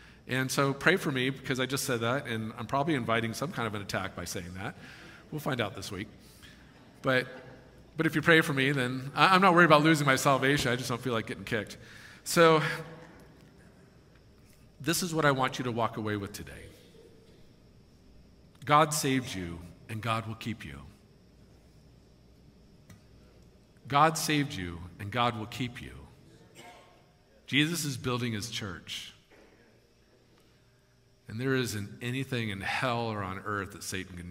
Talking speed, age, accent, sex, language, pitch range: 165 wpm, 50-69, American, male, English, 100-130 Hz